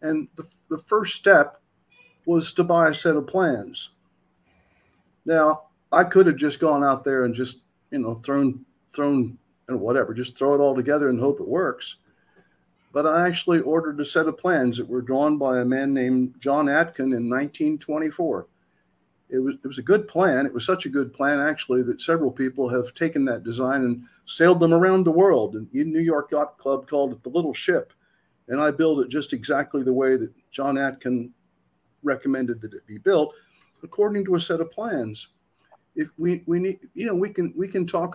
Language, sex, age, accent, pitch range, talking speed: English, male, 50-69, American, 130-175 Hz, 200 wpm